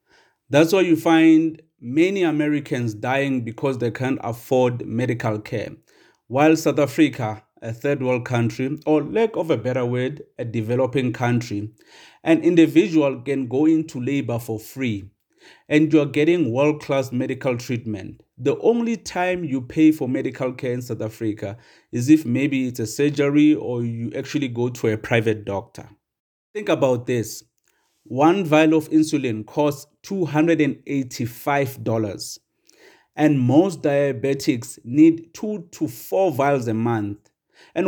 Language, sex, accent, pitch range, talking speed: English, male, South African, 125-165 Hz, 140 wpm